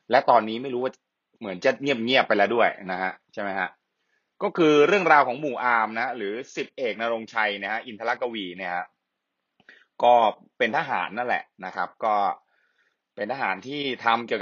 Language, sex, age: Thai, male, 20-39